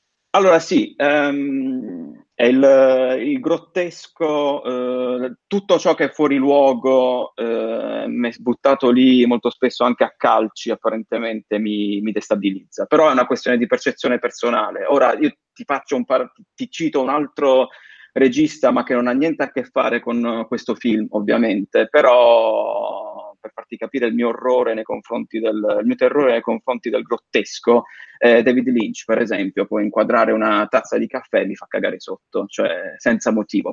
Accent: native